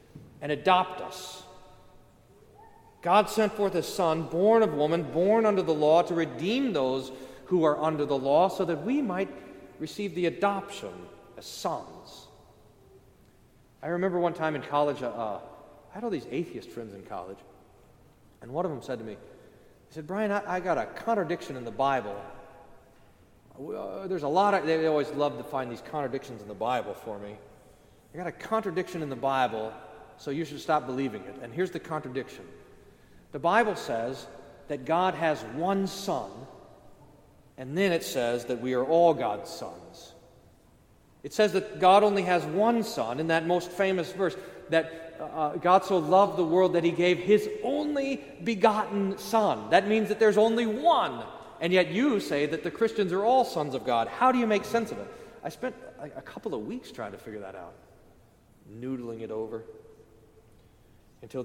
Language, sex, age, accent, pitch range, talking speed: English, male, 40-59, American, 130-195 Hz, 180 wpm